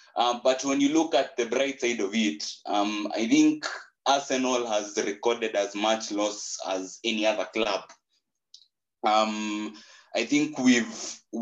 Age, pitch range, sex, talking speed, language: 20-39, 100-120 Hz, male, 145 wpm, English